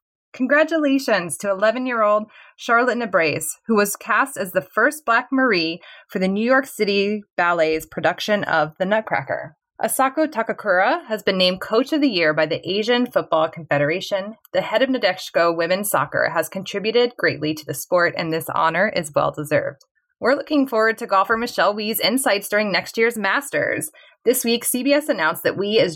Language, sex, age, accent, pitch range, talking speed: English, female, 20-39, American, 180-255 Hz, 170 wpm